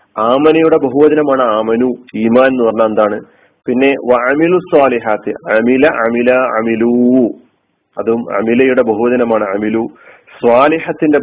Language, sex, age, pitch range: Malayalam, male, 40-59, 115-150 Hz